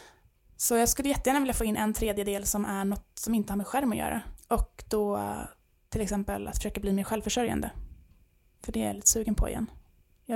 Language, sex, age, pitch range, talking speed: Swedish, female, 20-39, 200-235 Hz, 215 wpm